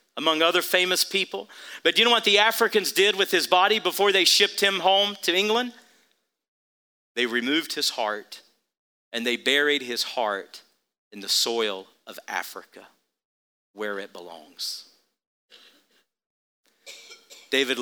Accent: American